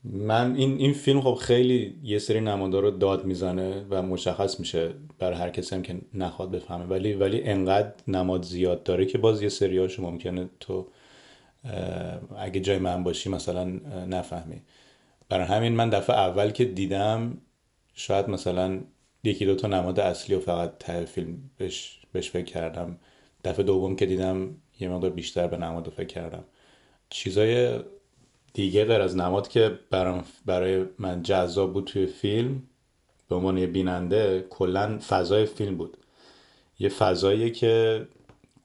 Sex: male